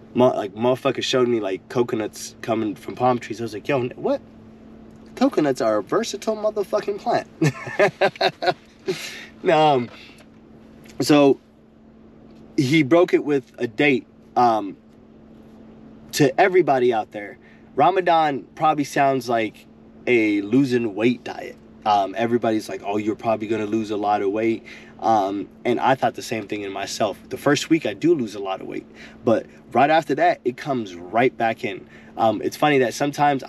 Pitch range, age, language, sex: 115-145 Hz, 20-39, English, male